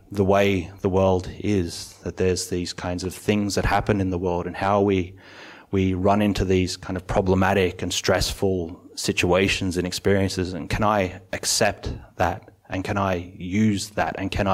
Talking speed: 180 wpm